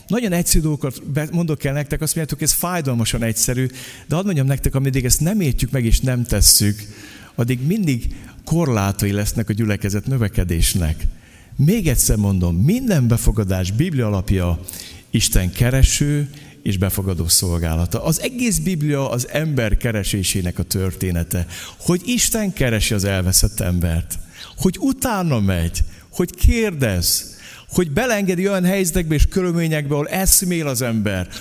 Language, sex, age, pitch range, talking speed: Hungarian, male, 50-69, 105-155 Hz, 135 wpm